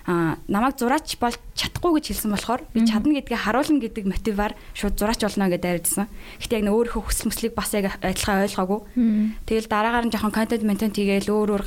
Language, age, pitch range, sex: English, 20-39, 185-225 Hz, female